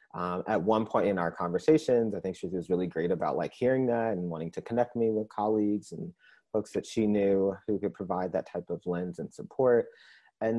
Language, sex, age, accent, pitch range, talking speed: English, male, 30-49, American, 90-115 Hz, 220 wpm